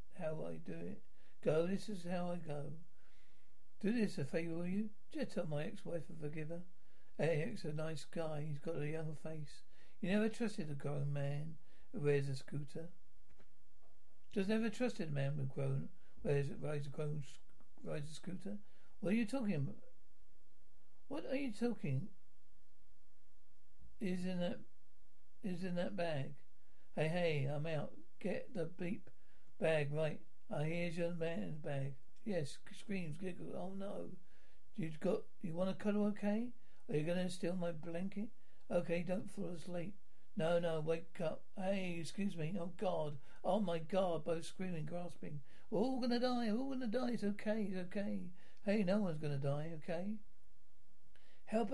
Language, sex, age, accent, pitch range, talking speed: English, male, 60-79, British, 155-200 Hz, 165 wpm